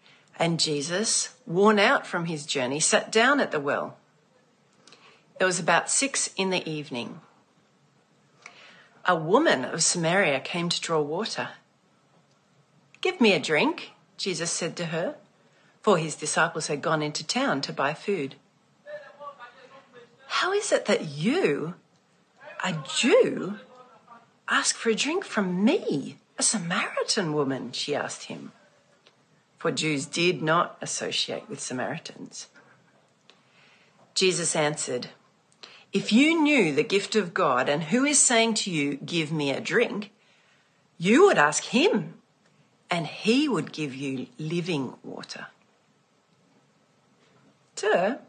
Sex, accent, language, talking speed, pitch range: female, Australian, English, 125 wpm, 160-245 Hz